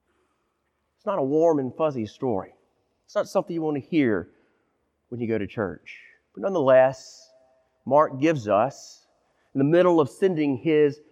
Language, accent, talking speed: English, American, 160 wpm